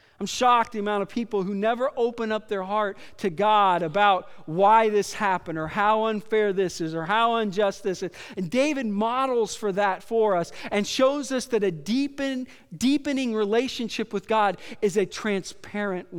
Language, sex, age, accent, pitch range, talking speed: English, male, 40-59, American, 180-225 Hz, 175 wpm